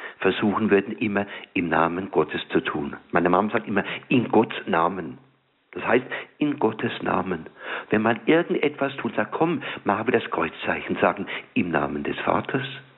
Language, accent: German, German